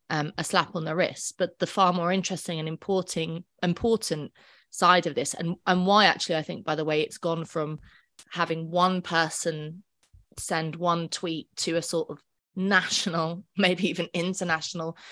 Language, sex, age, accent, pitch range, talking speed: English, female, 20-39, British, 155-180 Hz, 170 wpm